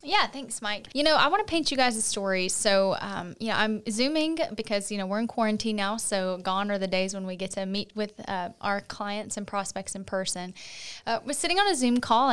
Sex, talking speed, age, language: female, 250 wpm, 10-29, English